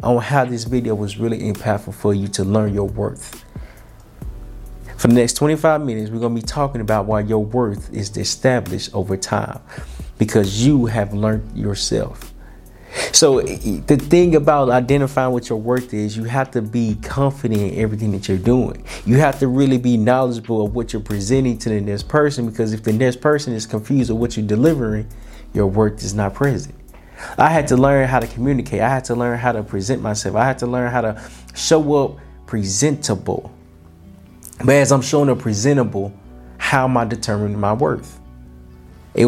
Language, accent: English, American